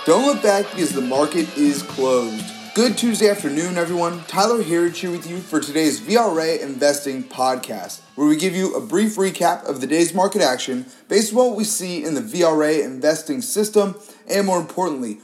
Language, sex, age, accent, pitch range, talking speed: English, male, 30-49, American, 150-205 Hz, 185 wpm